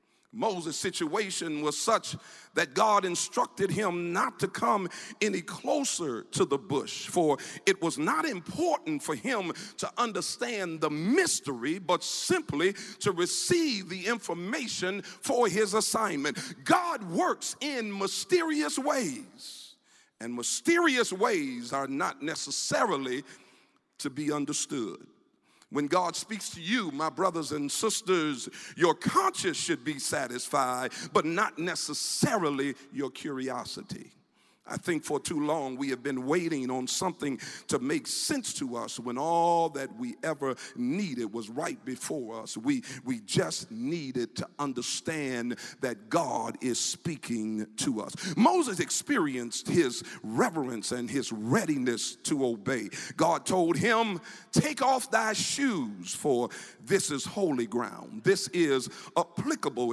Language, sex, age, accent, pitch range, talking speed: English, male, 50-69, American, 150-245 Hz, 130 wpm